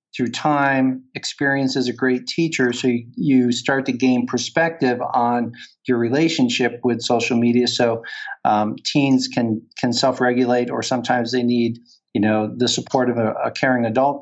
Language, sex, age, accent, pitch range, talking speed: English, male, 50-69, American, 120-145 Hz, 165 wpm